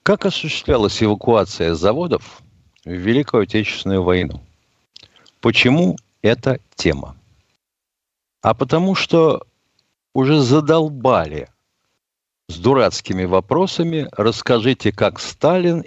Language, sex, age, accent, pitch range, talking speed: Russian, male, 60-79, native, 105-145 Hz, 85 wpm